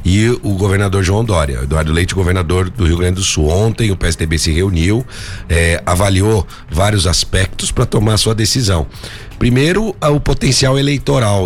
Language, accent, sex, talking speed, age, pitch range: Portuguese, Brazilian, male, 155 wpm, 50-69, 90-120 Hz